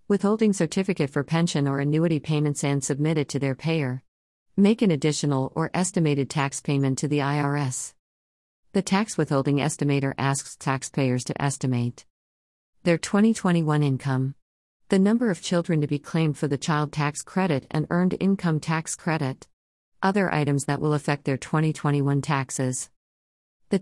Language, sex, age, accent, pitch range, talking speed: English, female, 50-69, American, 130-160 Hz, 150 wpm